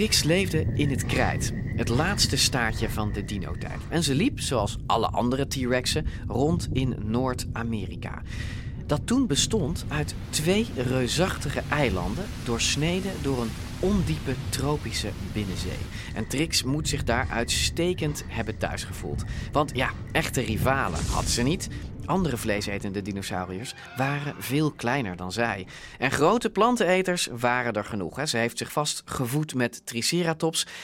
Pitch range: 110-150 Hz